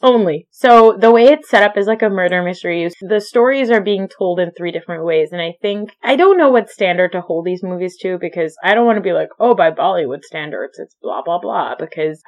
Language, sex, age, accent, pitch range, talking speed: English, female, 20-39, American, 170-220 Hz, 245 wpm